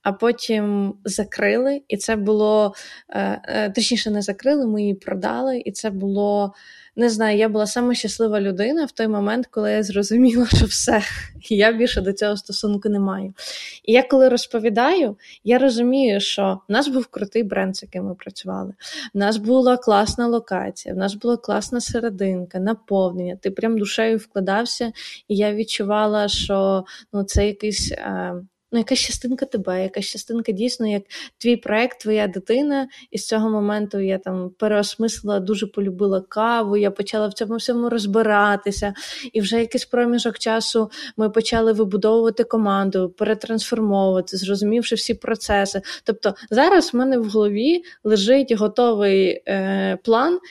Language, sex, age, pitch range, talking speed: Ukrainian, female, 20-39, 200-235 Hz, 150 wpm